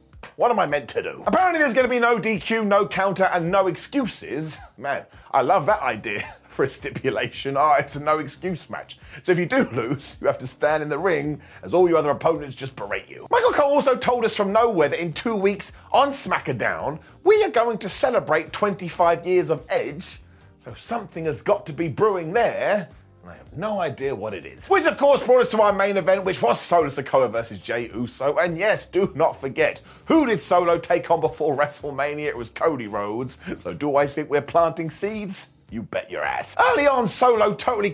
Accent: British